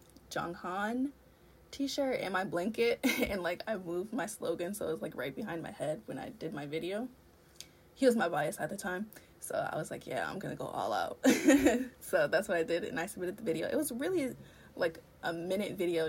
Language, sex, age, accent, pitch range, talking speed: English, female, 20-39, American, 170-255 Hz, 215 wpm